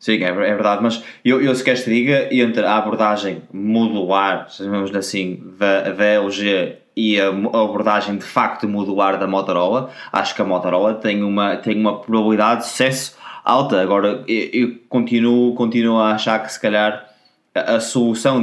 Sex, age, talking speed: male, 20-39, 175 wpm